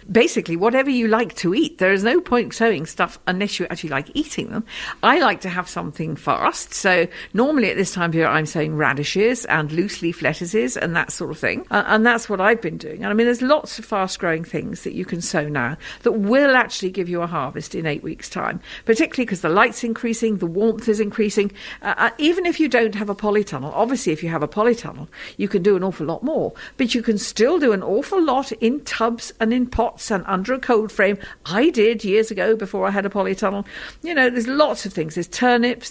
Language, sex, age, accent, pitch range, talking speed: English, female, 50-69, British, 175-230 Hz, 235 wpm